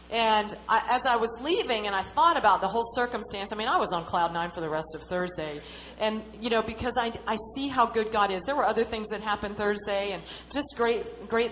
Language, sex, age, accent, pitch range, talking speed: English, female, 30-49, American, 200-250 Hz, 245 wpm